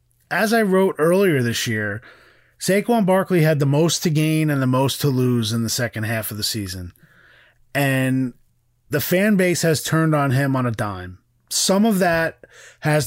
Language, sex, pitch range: English, male, 125-160 Hz